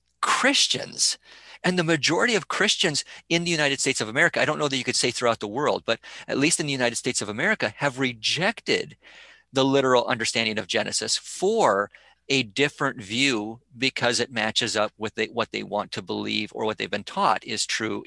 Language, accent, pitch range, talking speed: English, American, 110-140 Hz, 195 wpm